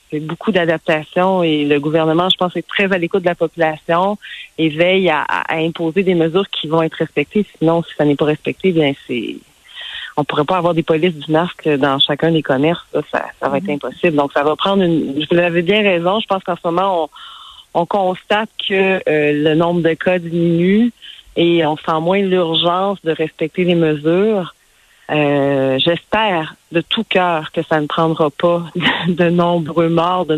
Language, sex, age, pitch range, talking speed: French, female, 40-59, 155-180 Hz, 200 wpm